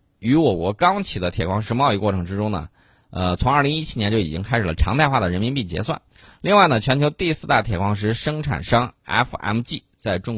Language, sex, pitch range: Chinese, male, 95-125 Hz